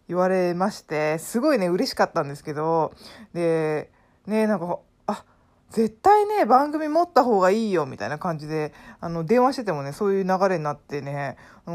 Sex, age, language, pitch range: female, 20-39, Japanese, 155-225 Hz